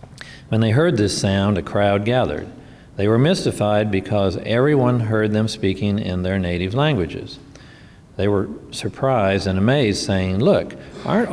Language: English